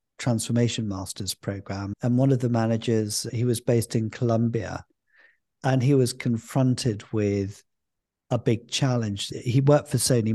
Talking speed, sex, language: 145 wpm, male, English